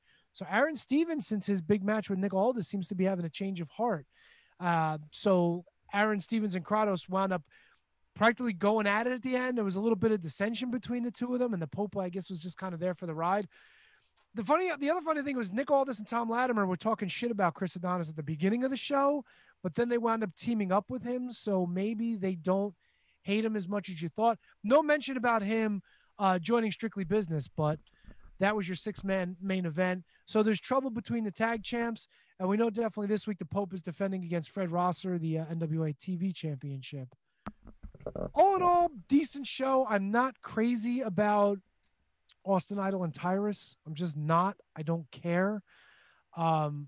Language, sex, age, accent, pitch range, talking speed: English, male, 30-49, American, 180-230 Hz, 205 wpm